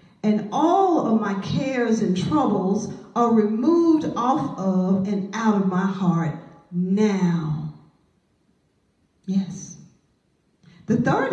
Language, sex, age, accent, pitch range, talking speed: English, female, 50-69, American, 180-240 Hz, 105 wpm